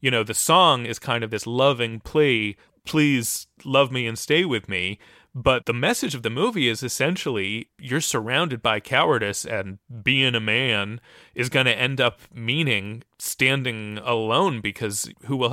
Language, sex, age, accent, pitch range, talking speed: English, male, 30-49, American, 115-145 Hz, 170 wpm